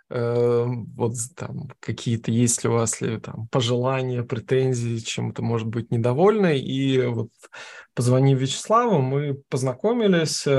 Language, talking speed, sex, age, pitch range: Russian, 125 wpm, male, 20-39, 125-150 Hz